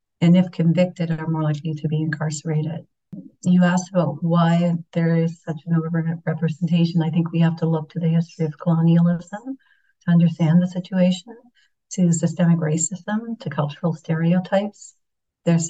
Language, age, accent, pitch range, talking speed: English, 50-69, American, 165-180 Hz, 155 wpm